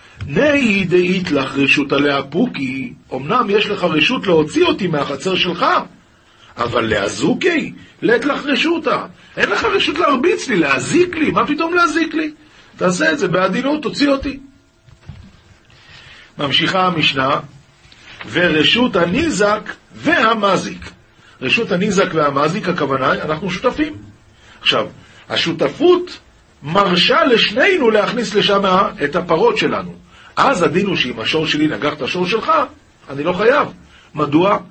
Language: Hebrew